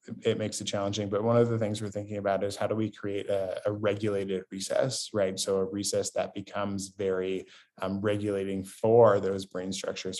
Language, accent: English, American